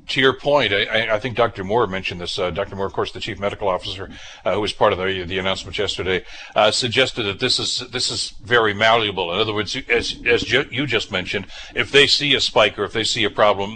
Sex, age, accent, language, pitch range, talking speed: male, 60-79, American, English, 100-125 Hz, 250 wpm